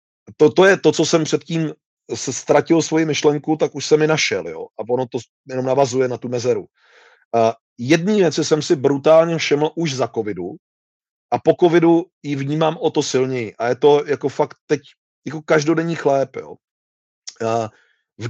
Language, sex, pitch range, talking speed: Czech, male, 135-160 Hz, 165 wpm